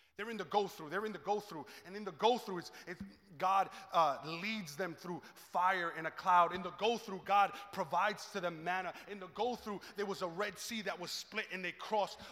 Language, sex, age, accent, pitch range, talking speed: English, male, 20-39, American, 170-220 Hz, 210 wpm